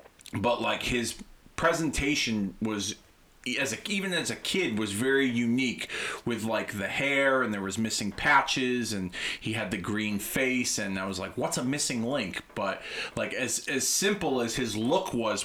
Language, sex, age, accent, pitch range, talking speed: English, male, 30-49, American, 105-135 Hz, 180 wpm